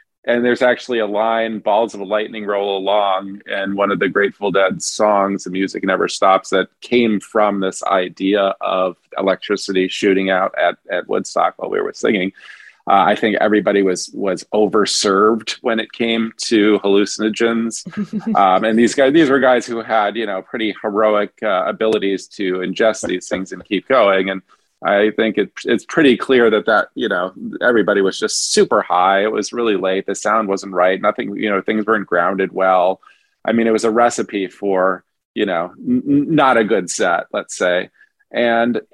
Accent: American